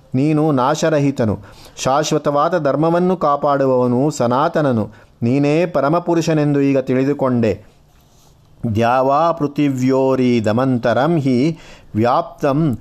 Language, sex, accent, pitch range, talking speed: Kannada, male, native, 125-155 Hz, 65 wpm